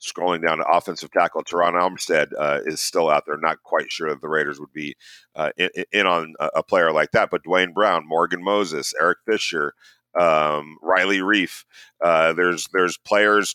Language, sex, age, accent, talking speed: English, male, 40-59, American, 175 wpm